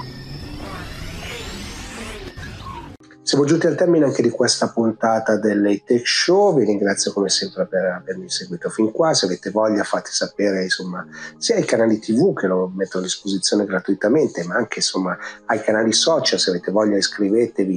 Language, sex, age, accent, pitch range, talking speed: Italian, male, 30-49, native, 100-120 Hz, 155 wpm